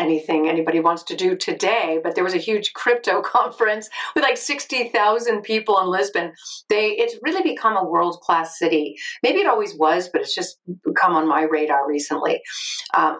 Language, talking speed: English, 175 wpm